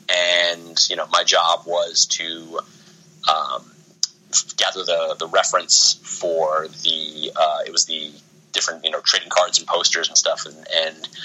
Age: 30-49